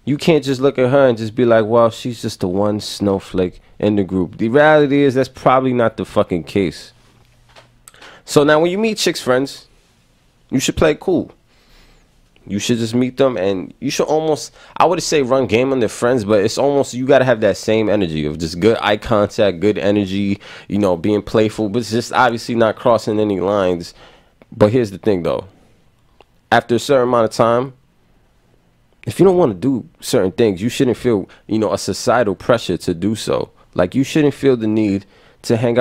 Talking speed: 205 wpm